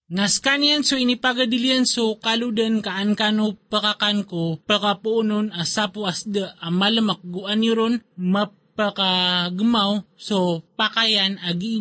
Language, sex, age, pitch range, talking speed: Filipino, male, 20-39, 185-220 Hz, 105 wpm